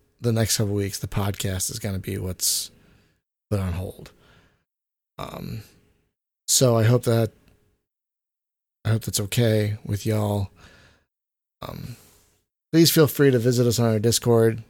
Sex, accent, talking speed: male, American, 145 wpm